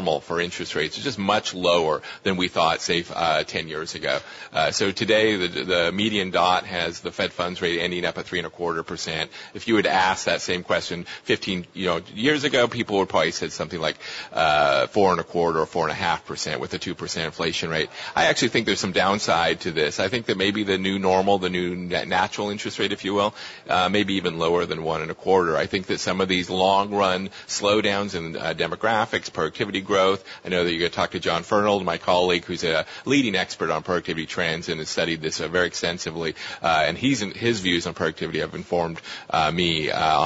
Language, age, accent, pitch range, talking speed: English, 40-59, American, 85-100 Hz, 205 wpm